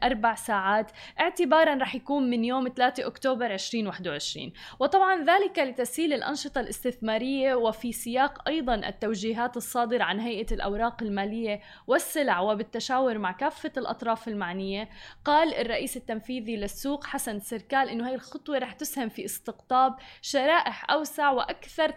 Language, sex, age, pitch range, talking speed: Arabic, female, 20-39, 230-275 Hz, 125 wpm